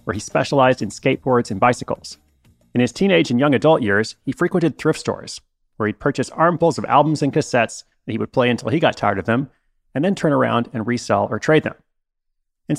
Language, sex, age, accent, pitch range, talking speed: English, male, 30-49, American, 115-155 Hz, 215 wpm